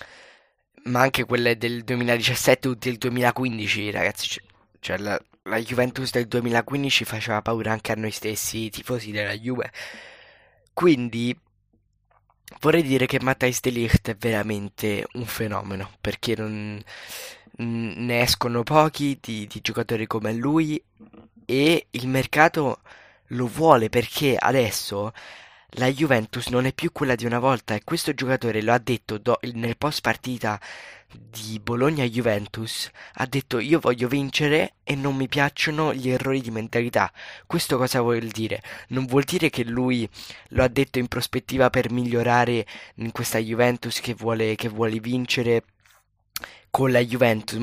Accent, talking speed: native, 145 wpm